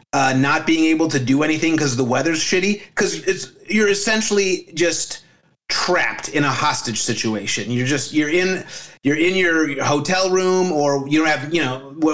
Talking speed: 180 wpm